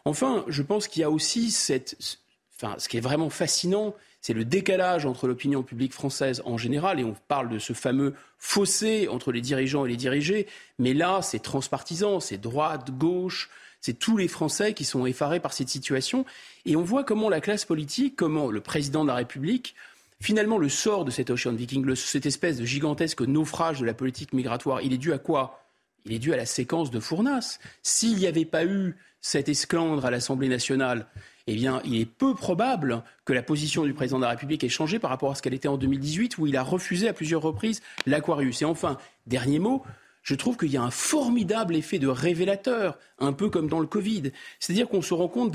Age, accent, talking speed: 30-49, French, 215 wpm